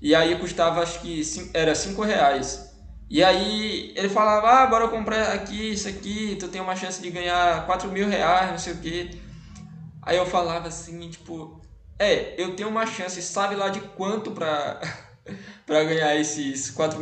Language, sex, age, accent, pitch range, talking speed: Portuguese, male, 20-39, Brazilian, 155-200 Hz, 185 wpm